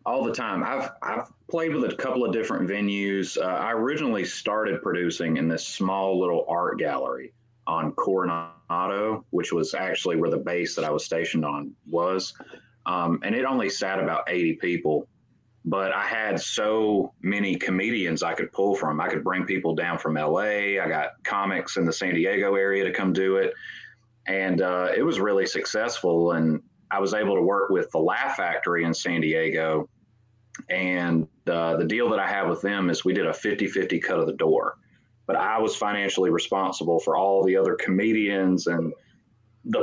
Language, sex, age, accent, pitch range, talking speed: English, male, 30-49, American, 85-100 Hz, 185 wpm